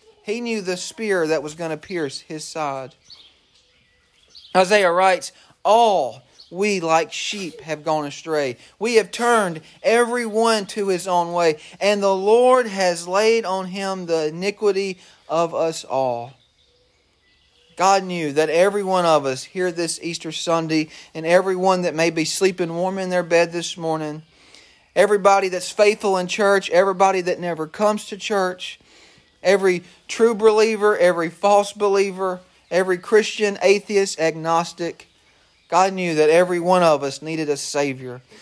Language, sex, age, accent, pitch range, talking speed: English, male, 40-59, American, 160-200 Hz, 145 wpm